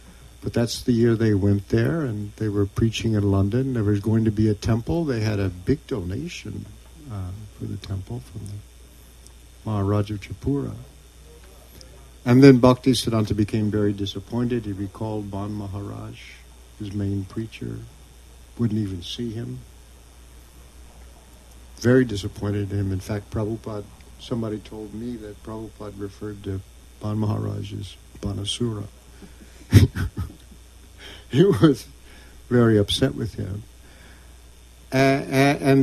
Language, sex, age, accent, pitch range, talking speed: English, male, 50-69, American, 90-120 Hz, 130 wpm